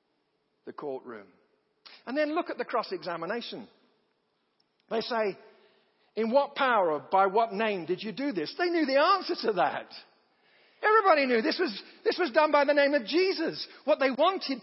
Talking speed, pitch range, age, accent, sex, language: 170 wpm, 180-280 Hz, 50-69, British, male, English